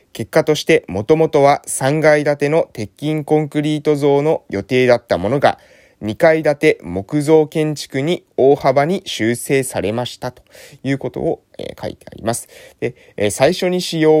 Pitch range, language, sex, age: 120-155 Hz, Japanese, male, 20-39